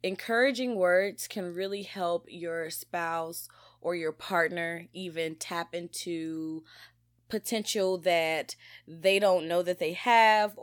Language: English